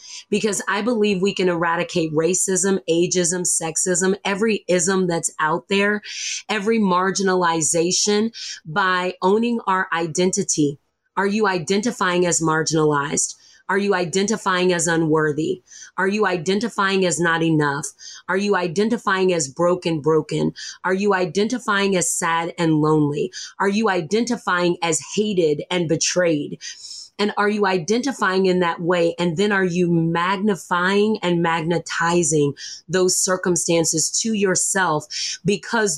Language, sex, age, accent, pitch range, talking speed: English, female, 30-49, American, 165-195 Hz, 125 wpm